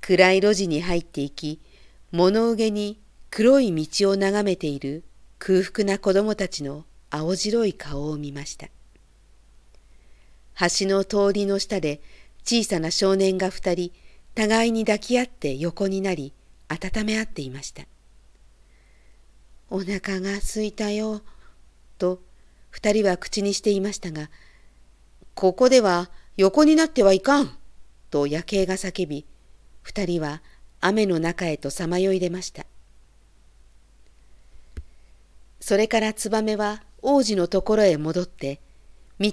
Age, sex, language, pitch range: 50-69, female, Japanese, 145-205 Hz